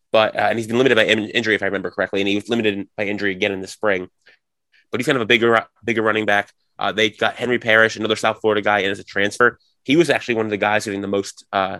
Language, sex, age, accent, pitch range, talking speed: English, male, 20-39, American, 100-115 Hz, 280 wpm